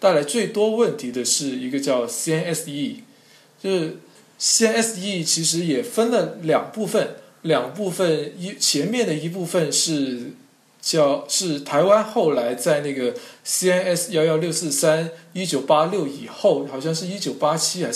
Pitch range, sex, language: 145-210 Hz, male, Chinese